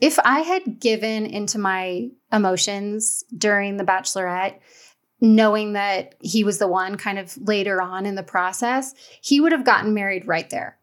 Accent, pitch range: American, 205-245 Hz